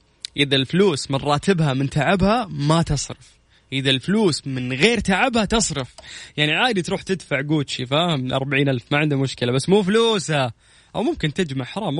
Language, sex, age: Arabic, male, 20-39